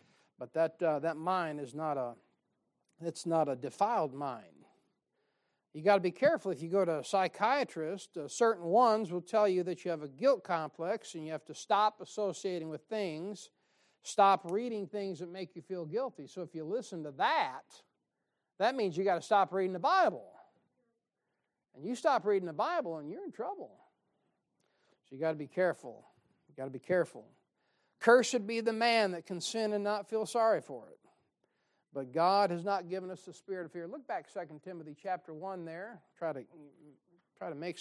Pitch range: 160-210 Hz